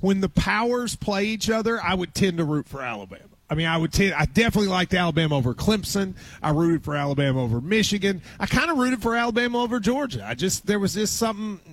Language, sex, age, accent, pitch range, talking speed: English, male, 30-49, American, 160-230 Hz, 225 wpm